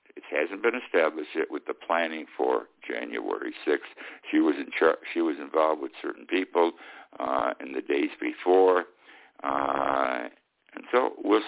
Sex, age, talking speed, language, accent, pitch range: male, 60-79, 155 wpm, English, American, 310-410 Hz